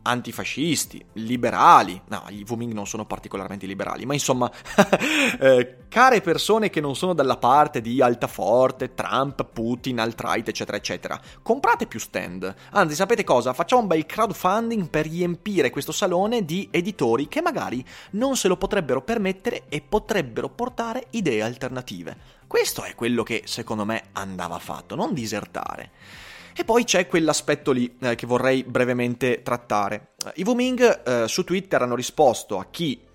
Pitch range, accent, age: 115-175 Hz, native, 30-49